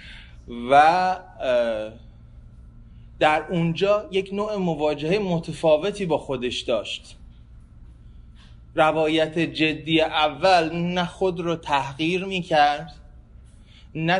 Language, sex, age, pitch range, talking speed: Persian, male, 30-49, 110-175 Hz, 80 wpm